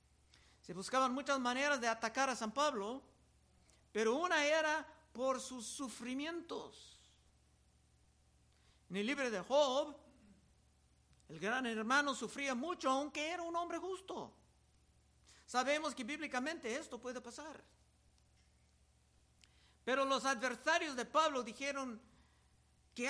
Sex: male